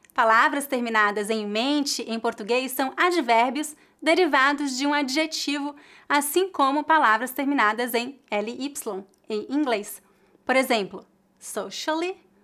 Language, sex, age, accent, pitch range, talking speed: English, female, 20-39, Brazilian, 225-305 Hz, 110 wpm